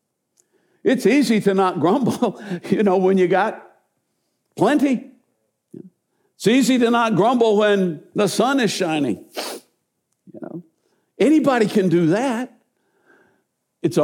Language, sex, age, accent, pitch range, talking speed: English, male, 60-79, American, 135-225 Hz, 120 wpm